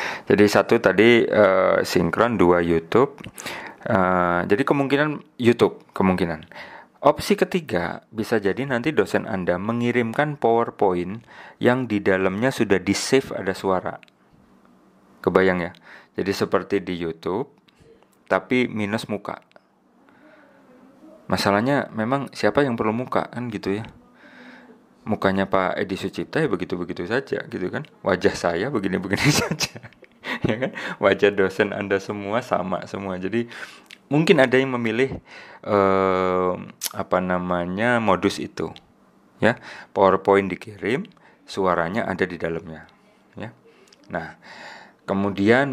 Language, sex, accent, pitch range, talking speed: Indonesian, male, native, 90-120 Hz, 115 wpm